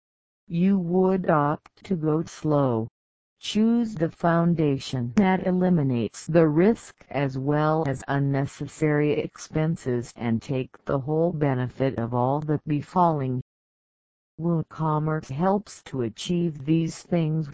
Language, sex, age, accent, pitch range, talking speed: English, female, 50-69, American, 130-165 Hz, 115 wpm